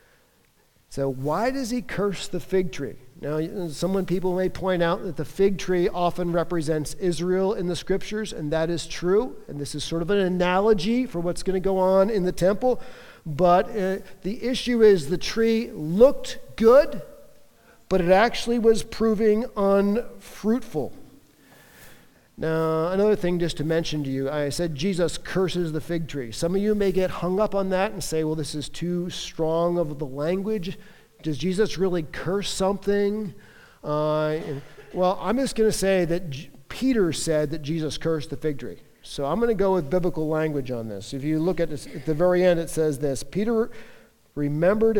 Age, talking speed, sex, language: 50-69, 185 wpm, male, English